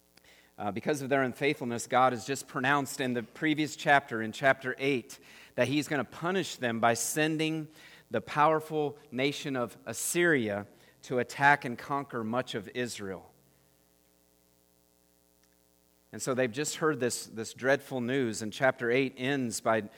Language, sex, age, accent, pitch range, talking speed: English, male, 40-59, American, 105-145 Hz, 150 wpm